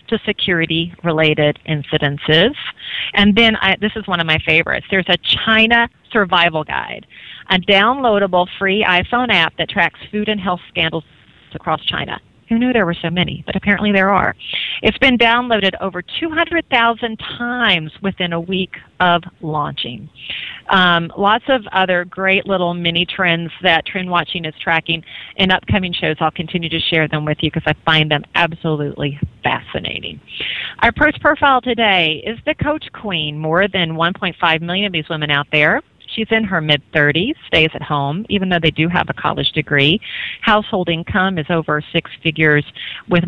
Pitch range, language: 155-195 Hz, English